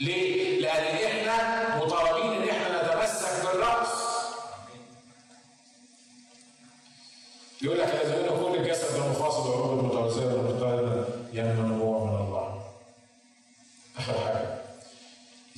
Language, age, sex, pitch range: Arabic, 40-59, male, 120-145 Hz